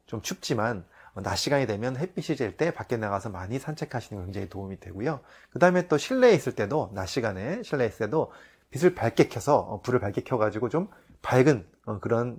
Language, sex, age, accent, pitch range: Korean, male, 30-49, native, 105-160 Hz